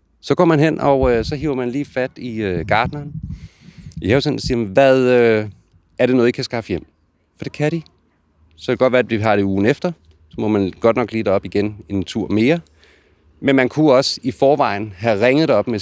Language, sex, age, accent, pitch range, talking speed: Danish, male, 30-49, native, 90-125 Hz, 250 wpm